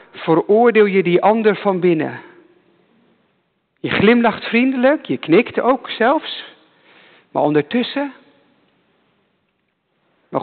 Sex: male